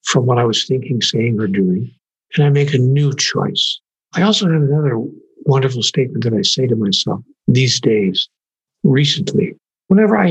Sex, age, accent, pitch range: male, 60-79, American, 120-165 Hz